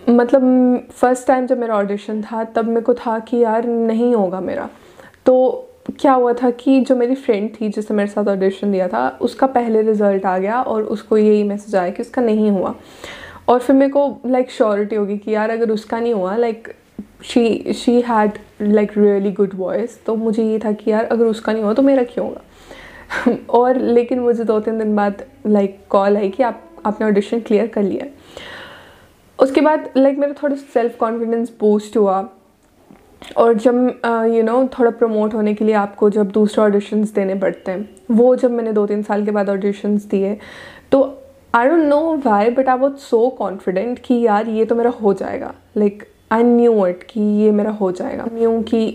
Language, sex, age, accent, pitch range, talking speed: Hindi, female, 20-39, native, 210-245 Hz, 200 wpm